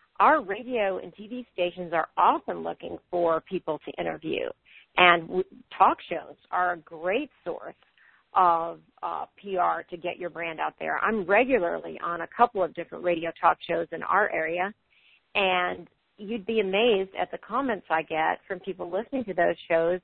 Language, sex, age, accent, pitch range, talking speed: English, female, 40-59, American, 170-205 Hz, 170 wpm